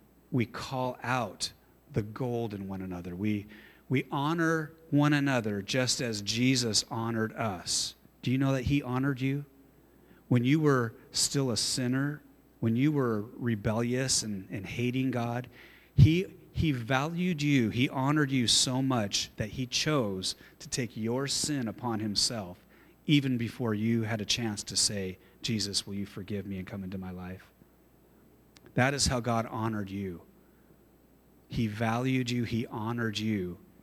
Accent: American